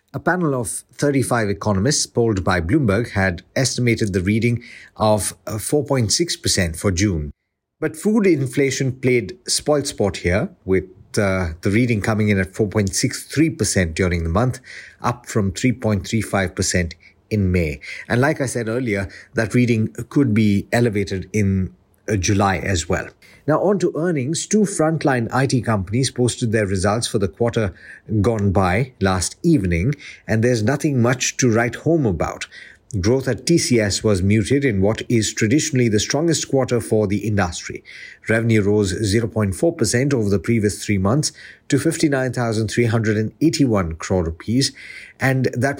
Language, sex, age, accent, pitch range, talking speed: English, male, 50-69, Indian, 100-135 Hz, 145 wpm